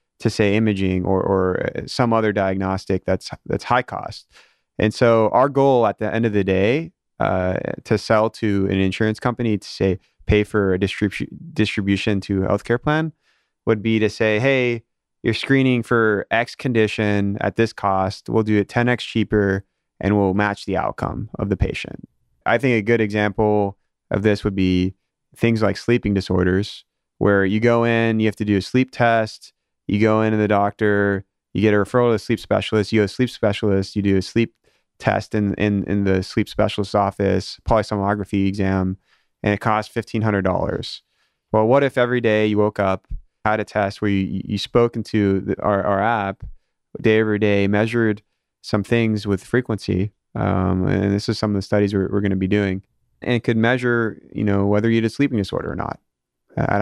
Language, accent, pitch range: English, American, 100-115 Hz